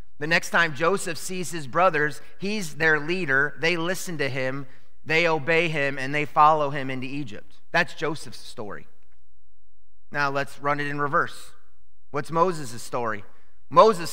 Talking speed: 155 wpm